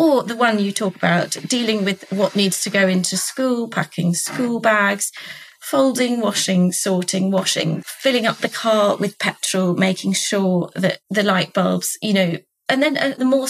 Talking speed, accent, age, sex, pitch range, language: 175 wpm, British, 30-49, female, 185-235 Hz, English